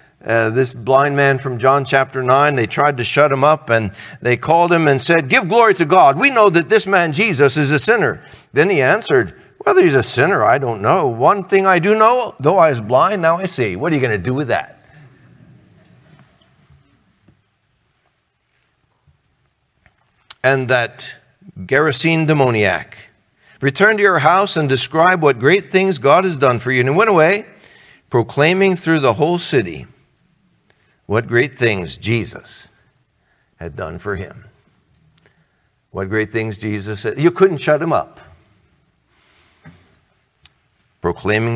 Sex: male